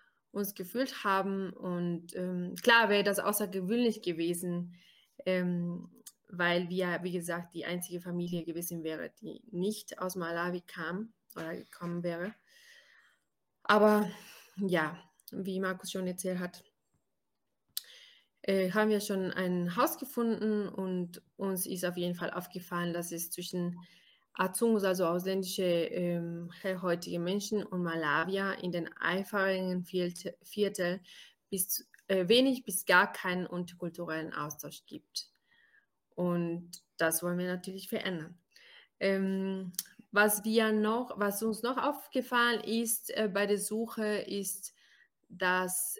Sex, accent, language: female, German, German